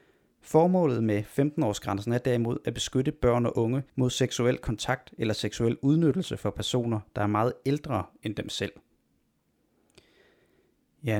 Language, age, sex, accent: Danish, 30-49, male, native